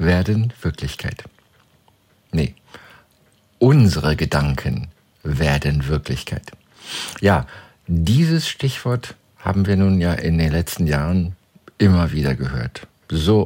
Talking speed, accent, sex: 100 wpm, German, male